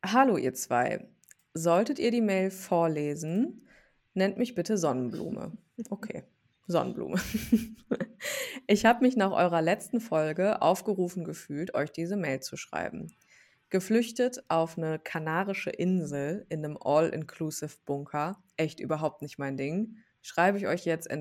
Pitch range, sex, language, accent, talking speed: 155-200 Hz, female, German, German, 130 wpm